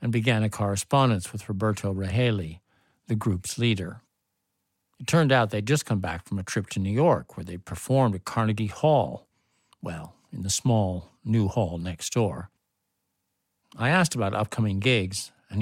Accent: American